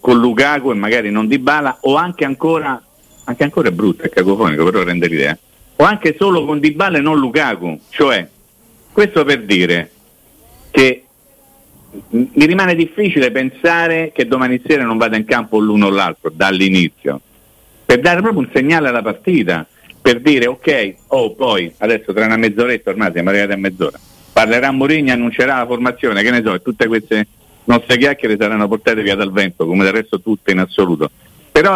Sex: male